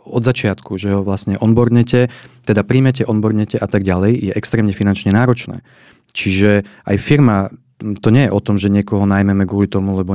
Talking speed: 175 wpm